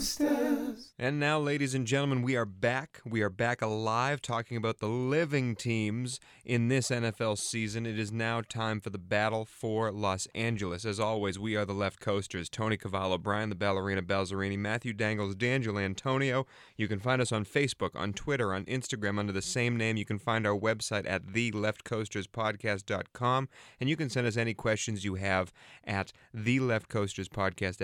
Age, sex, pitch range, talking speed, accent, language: 30-49, male, 100-130 Hz, 170 wpm, American, English